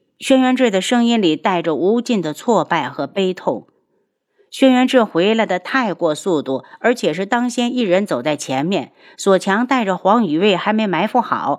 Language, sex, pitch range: Chinese, female, 155-225 Hz